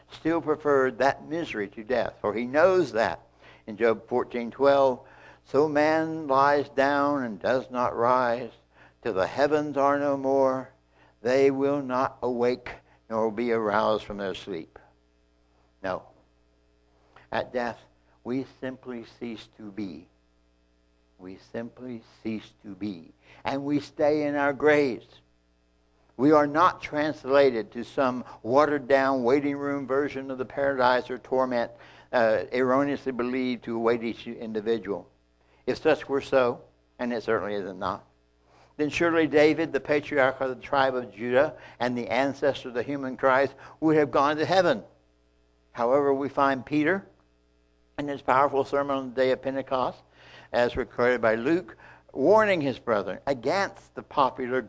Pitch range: 105-140 Hz